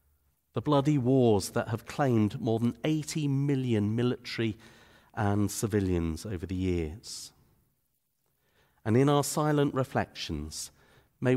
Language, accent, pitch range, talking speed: English, British, 90-130 Hz, 115 wpm